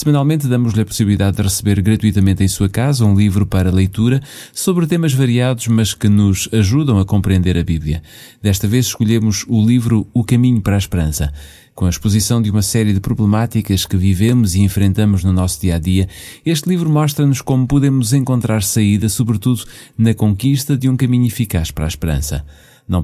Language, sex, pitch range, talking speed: Portuguese, male, 95-120 Hz, 175 wpm